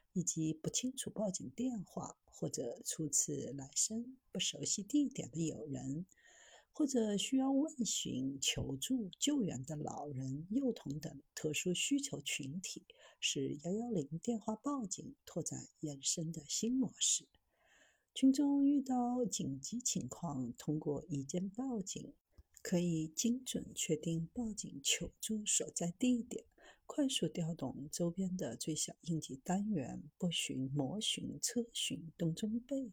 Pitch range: 155-235 Hz